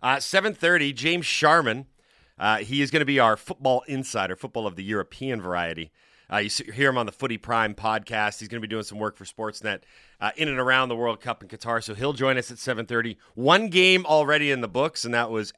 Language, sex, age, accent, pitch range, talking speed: English, male, 40-59, American, 110-150 Hz, 225 wpm